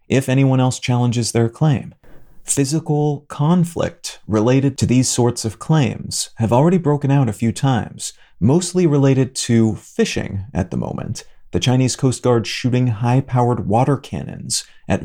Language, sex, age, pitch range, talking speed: English, male, 30-49, 110-135 Hz, 150 wpm